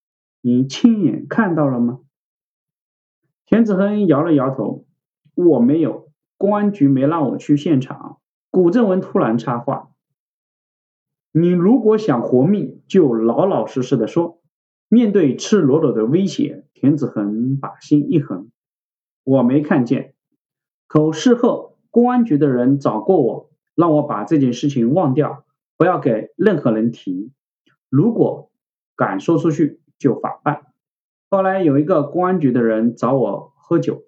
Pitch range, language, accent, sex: 135-200 Hz, Chinese, native, male